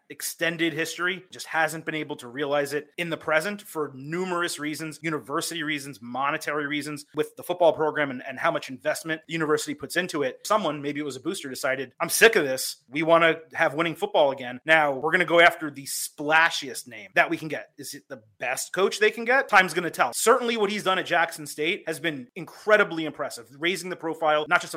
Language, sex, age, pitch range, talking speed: English, male, 30-49, 145-180 Hz, 225 wpm